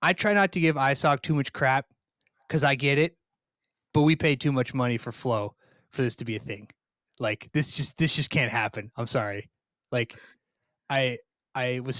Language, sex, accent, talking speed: English, male, American, 200 wpm